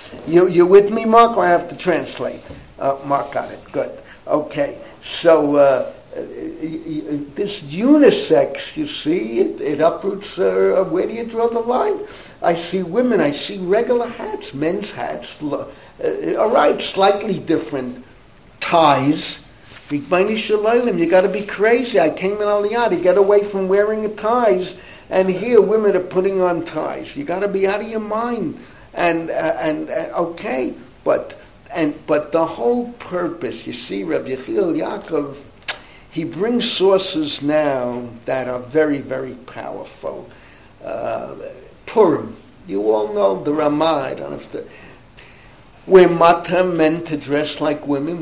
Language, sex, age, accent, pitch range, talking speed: English, male, 60-79, American, 150-230 Hz, 160 wpm